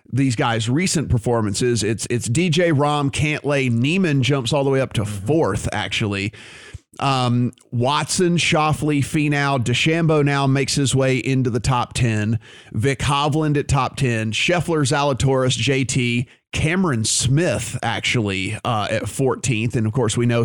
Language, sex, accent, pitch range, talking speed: English, male, American, 120-145 Hz, 145 wpm